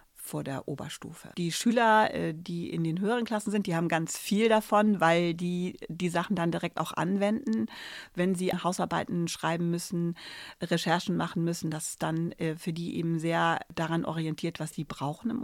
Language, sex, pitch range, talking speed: German, female, 170-210 Hz, 175 wpm